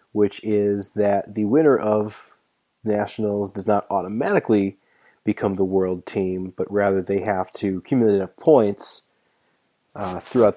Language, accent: English, American